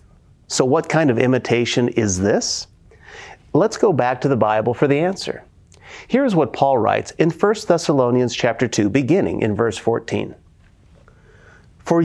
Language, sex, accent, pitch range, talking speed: English, male, American, 110-145 Hz, 150 wpm